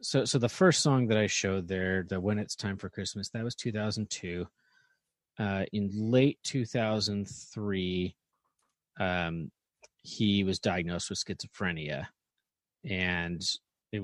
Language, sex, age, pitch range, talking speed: English, male, 30-49, 90-105 Hz, 130 wpm